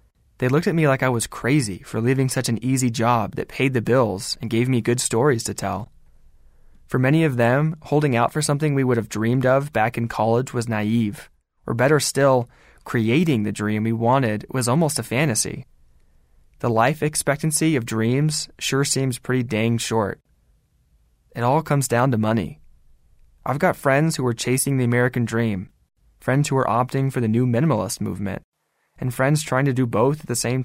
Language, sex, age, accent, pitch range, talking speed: English, male, 20-39, American, 110-135 Hz, 190 wpm